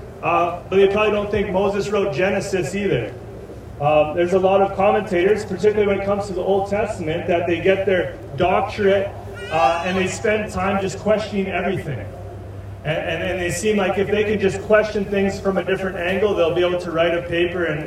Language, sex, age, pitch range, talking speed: English, male, 30-49, 165-200 Hz, 205 wpm